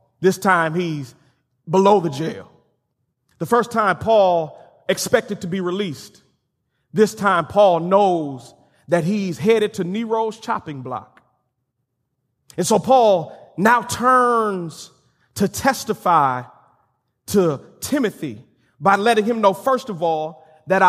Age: 30-49